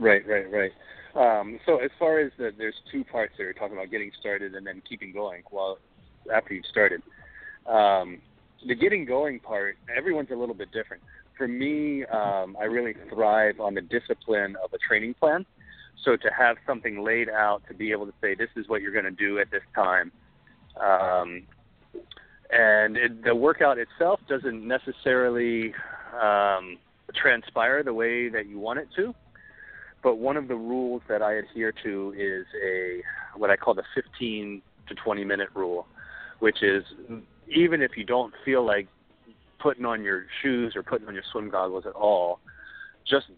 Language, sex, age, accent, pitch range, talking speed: English, male, 30-49, American, 100-120 Hz, 175 wpm